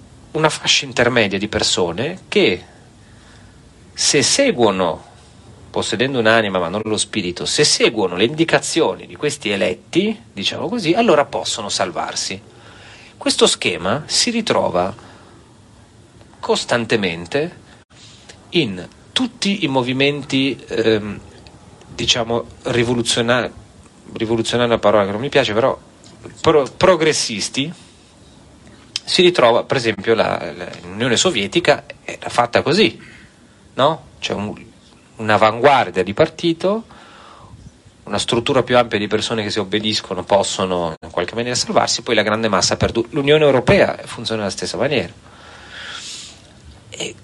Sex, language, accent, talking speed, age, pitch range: male, Italian, native, 115 wpm, 40-59, 100-130 Hz